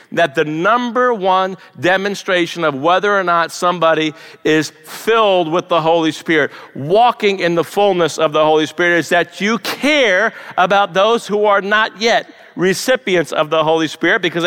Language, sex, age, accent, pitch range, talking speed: English, male, 50-69, American, 140-190 Hz, 165 wpm